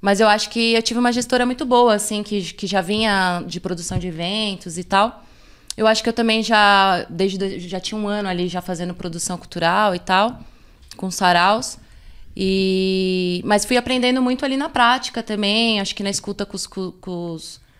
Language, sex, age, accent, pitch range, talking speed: Portuguese, female, 20-39, Brazilian, 180-215 Hz, 185 wpm